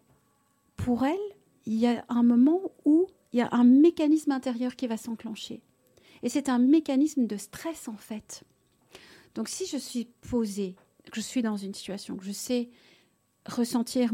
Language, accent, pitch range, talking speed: French, French, 220-280 Hz, 170 wpm